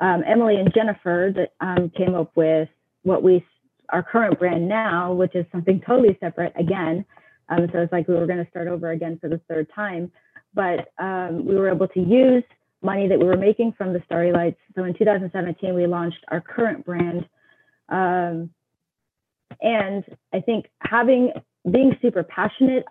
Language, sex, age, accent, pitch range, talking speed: English, female, 30-49, American, 170-215 Hz, 180 wpm